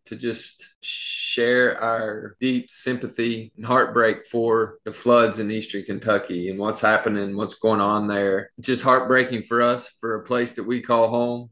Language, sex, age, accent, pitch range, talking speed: English, male, 20-39, American, 115-125 Hz, 165 wpm